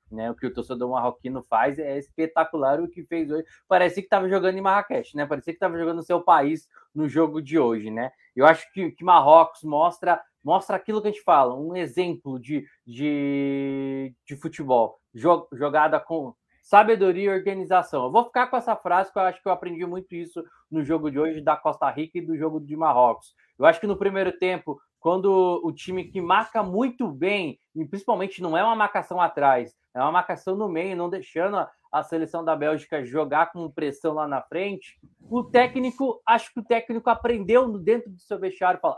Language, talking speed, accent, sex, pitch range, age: Portuguese, 200 wpm, Brazilian, male, 145-190 Hz, 20-39